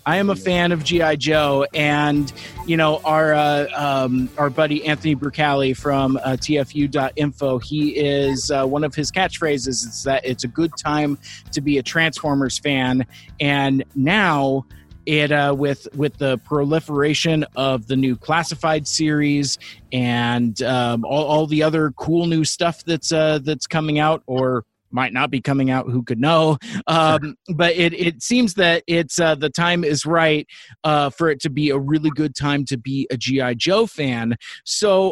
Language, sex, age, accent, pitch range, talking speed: English, male, 30-49, American, 135-170 Hz, 175 wpm